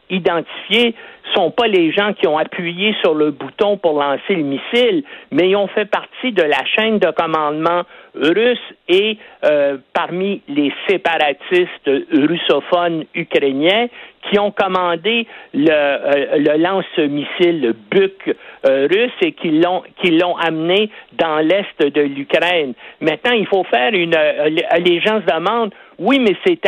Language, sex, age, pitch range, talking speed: French, male, 60-79, 160-225 Hz, 150 wpm